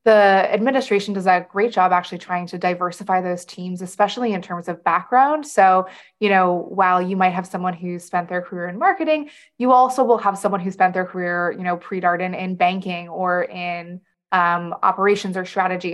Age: 20-39